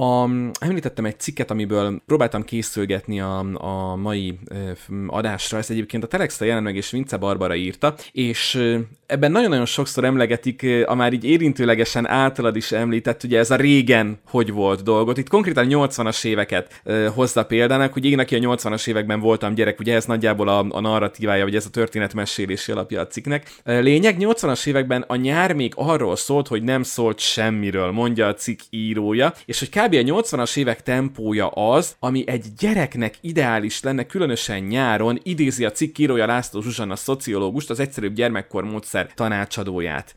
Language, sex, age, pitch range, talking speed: Hungarian, male, 20-39, 105-135 Hz, 165 wpm